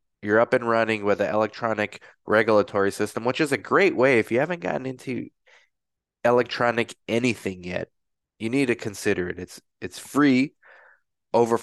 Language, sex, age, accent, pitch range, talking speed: English, male, 20-39, American, 100-120 Hz, 160 wpm